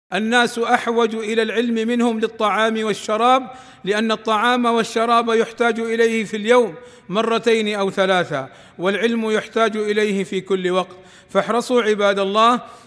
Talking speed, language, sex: 120 wpm, Arabic, male